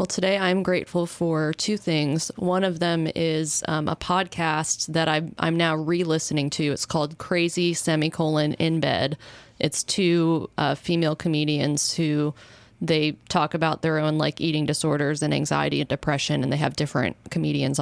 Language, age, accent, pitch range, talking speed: English, 20-39, American, 155-180 Hz, 160 wpm